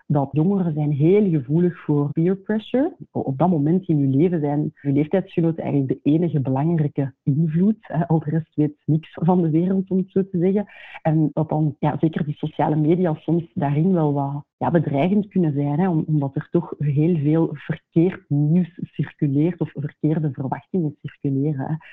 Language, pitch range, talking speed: Dutch, 145-170 Hz, 180 wpm